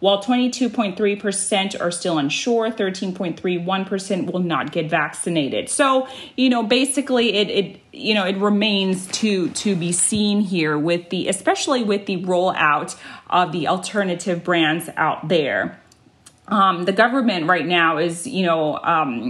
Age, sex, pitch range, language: 30-49, female, 180-230 Hz, Thai